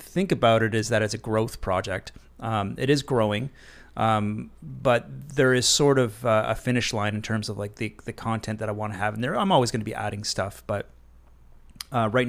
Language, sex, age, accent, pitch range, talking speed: English, male, 30-49, American, 100-120 Hz, 225 wpm